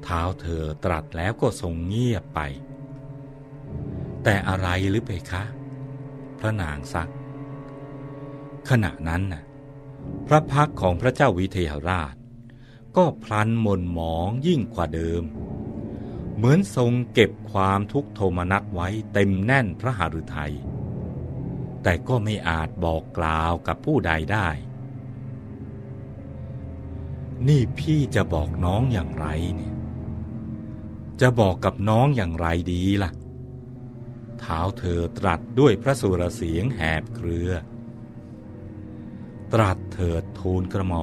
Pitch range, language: 95-125 Hz, Thai